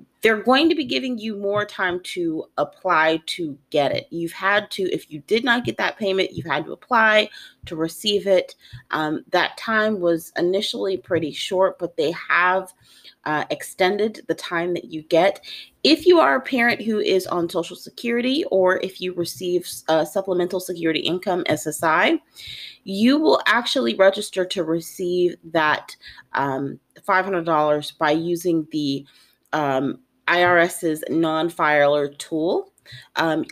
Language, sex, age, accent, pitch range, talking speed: English, female, 30-49, American, 160-205 Hz, 150 wpm